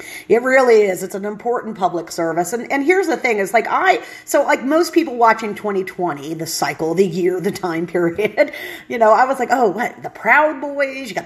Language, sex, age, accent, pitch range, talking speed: English, female, 40-59, American, 185-280 Hz, 220 wpm